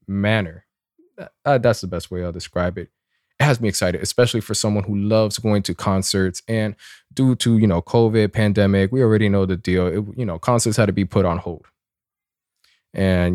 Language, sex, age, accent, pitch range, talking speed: English, male, 20-39, American, 95-115 Hz, 195 wpm